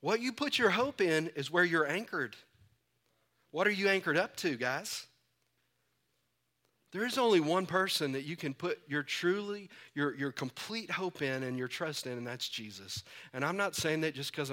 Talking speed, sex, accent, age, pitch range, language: 195 wpm, male, American, 40-59, 135-185 Hz, English